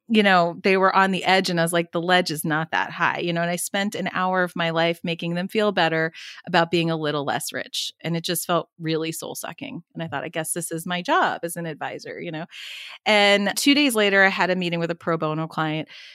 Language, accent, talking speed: English, American, 265 wpm